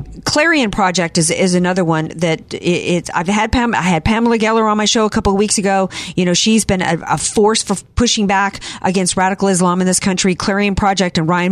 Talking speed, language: 225 wpm, English